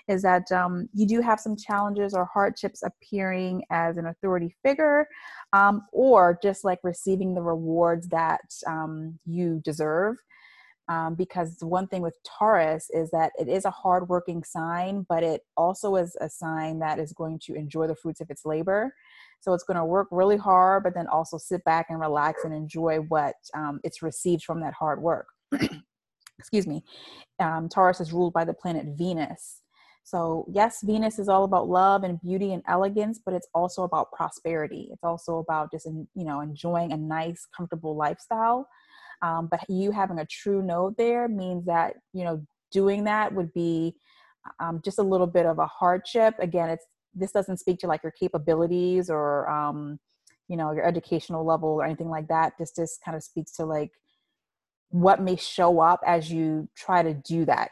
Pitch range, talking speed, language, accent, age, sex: 160-195 Hz, 185 wpm, English, American, 30-49, female